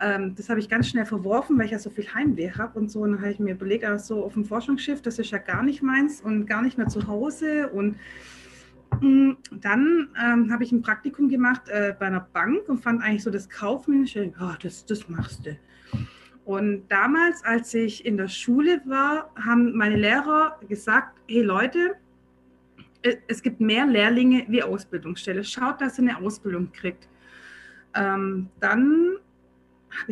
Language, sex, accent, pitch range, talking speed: German, female, German, 200-270 Hz, 180 wpm